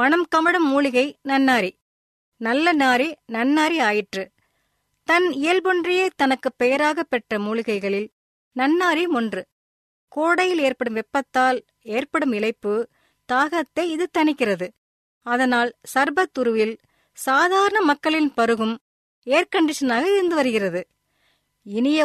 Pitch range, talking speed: 235-325 Hz, 90 wpm